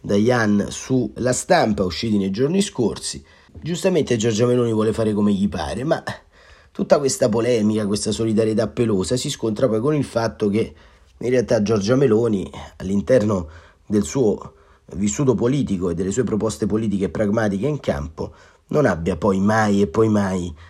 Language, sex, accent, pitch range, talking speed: Italian, male, native, 100-125 Hz, 155 wpm